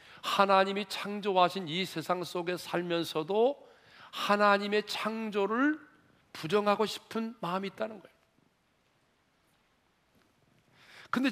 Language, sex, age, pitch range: Korean, male, 40-59, 140-210 Hz